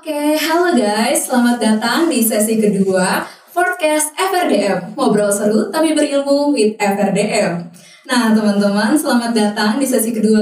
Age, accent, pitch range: 10-29, native, 210-255 Hz